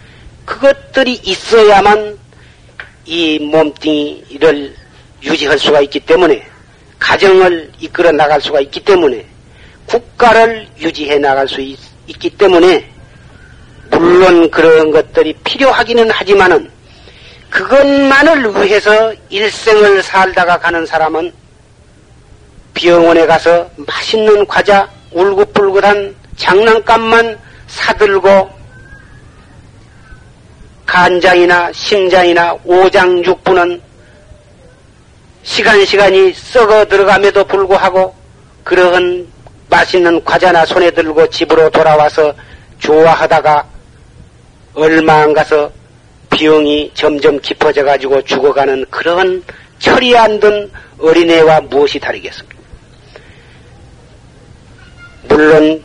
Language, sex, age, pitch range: Korean, male, 40-59, 155-205 Hz